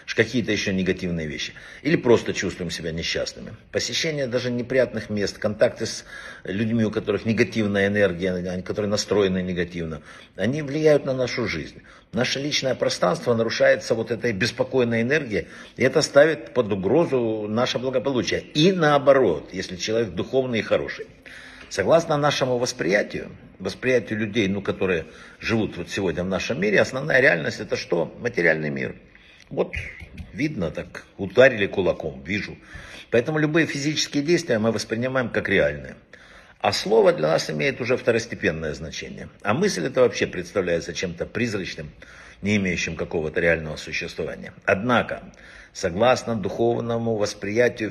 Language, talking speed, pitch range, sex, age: Russian, 135 wpm, 95-130 Hz, male, 60-79